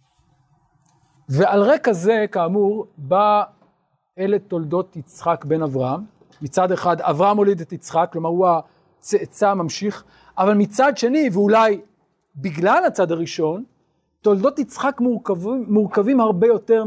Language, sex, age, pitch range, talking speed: Hebrew, male, 40-59, 160-215 Hz, 115 wpm